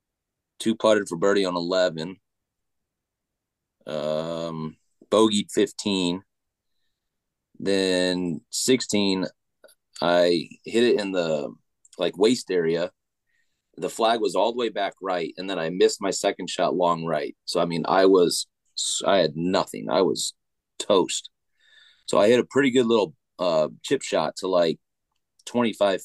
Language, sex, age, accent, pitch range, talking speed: English, male, 30-49, American, 90-115 Hz, 135 wpm